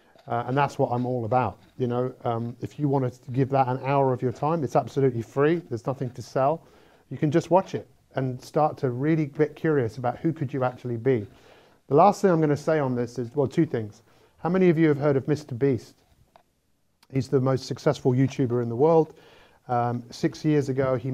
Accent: British